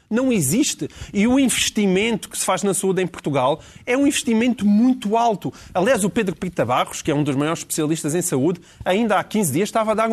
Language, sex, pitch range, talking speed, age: Portuguese, male, 185-235 Hz, 220 wpm, 30-49